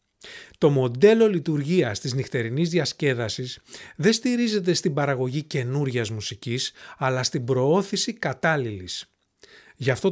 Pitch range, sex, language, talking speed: 130-200 Hz, male, English, 105 wpm